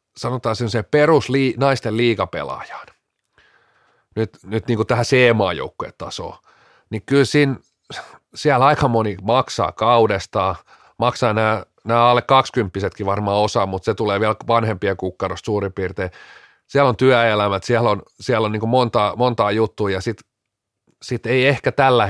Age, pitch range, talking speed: 40-59, 100-120 Hz, 145 wpm